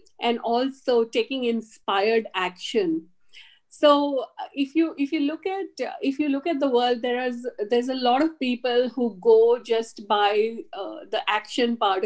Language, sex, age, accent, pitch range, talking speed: English, female, 50-69, Indian, 220-275 Hz, 165 wpm